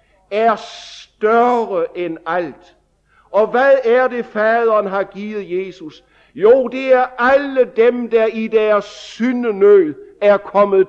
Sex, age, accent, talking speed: male, 60-79, German, 125 wpm